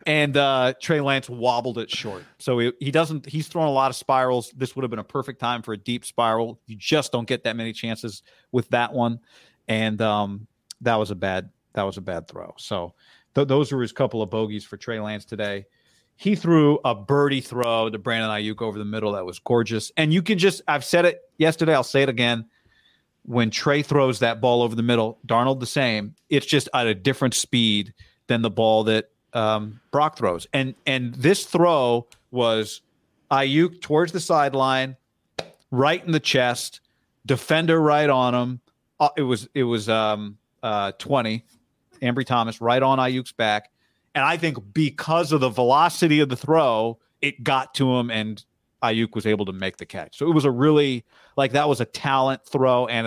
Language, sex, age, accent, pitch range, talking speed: English, male, 40-59, American, 110-140 Hz, 195 wpm